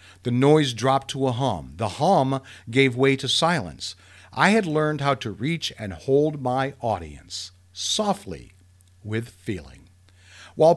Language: English